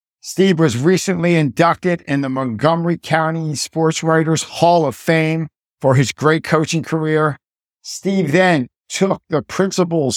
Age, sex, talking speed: 50-69, male, 135 wpm